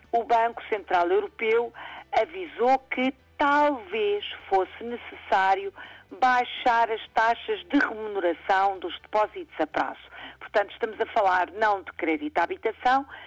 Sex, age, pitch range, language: female, 50-69, 205-290 Hz, Portuguese